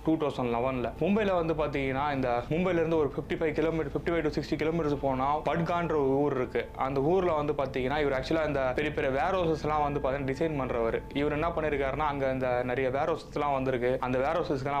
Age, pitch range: 20-39, 135-160 Hz